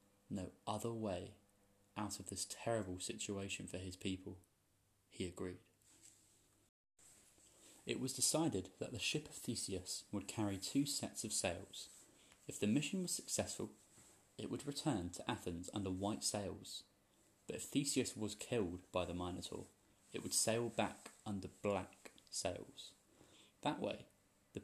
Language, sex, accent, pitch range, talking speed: English, male, British, 95-115 Hz, 140 wpm